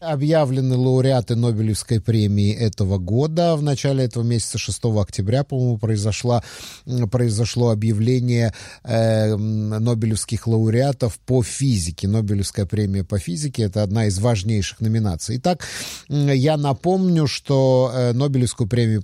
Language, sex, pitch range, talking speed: English, male, 110-140 Hz, 115 wpm